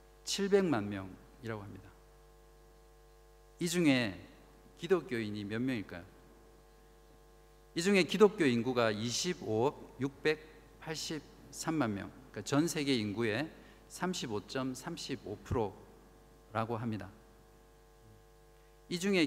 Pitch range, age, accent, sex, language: 105-150 Hz, 50-69, native, male, Korean